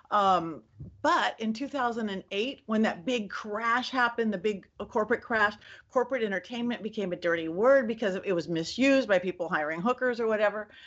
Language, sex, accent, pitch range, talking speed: English, female, American, 180-250 Hz, 160 wpm